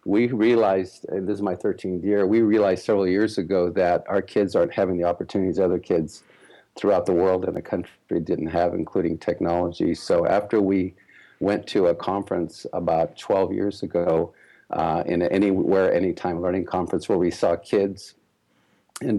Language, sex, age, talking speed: English, male, 50-69, 170 wpm